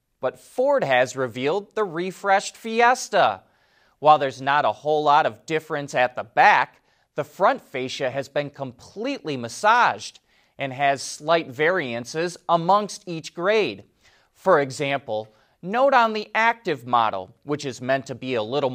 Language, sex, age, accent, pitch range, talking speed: English, male, 30-49, American, 135-190 Hz, 145 wpm